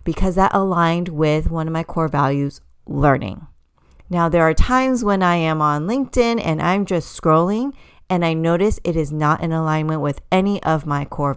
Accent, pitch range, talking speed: American, 150-190 Hz, 190 wpm